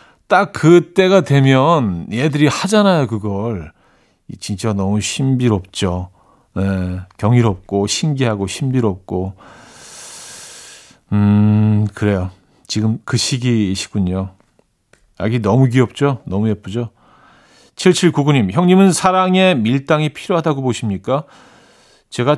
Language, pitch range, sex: Korean, 110-155 Hz, male